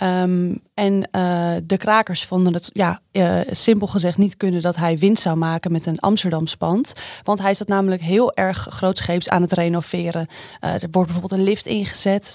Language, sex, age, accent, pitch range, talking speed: Dutch, female, 20-39, Dutch, 180-210 Hz, 190 wpm